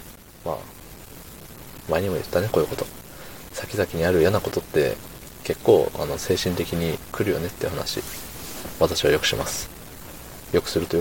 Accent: native